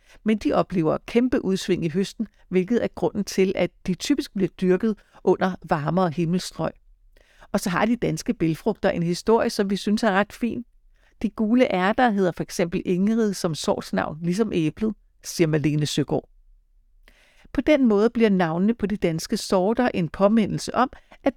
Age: 60-79